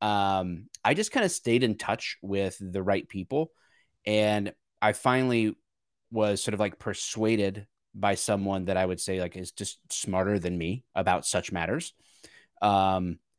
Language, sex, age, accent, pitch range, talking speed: English, male, 30-49, American, 95-110 Hz, 160 wpm